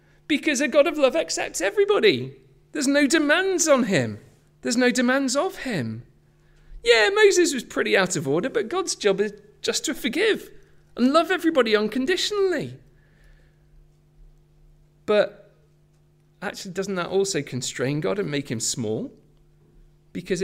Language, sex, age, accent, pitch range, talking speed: English, male, 40-59, British, 125-200 Hz, 140 wpm